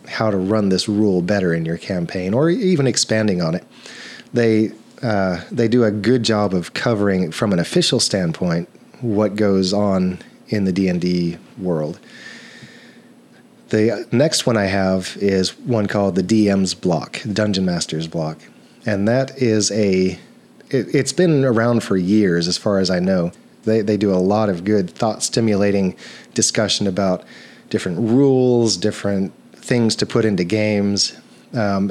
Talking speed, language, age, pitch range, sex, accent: 155 wpm, English, 30-49, 95-115 Hz, male, American